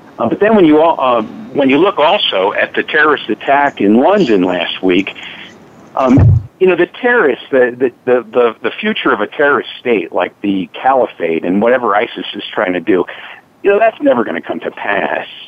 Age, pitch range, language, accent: 50-69, 115-165 Hz, English, American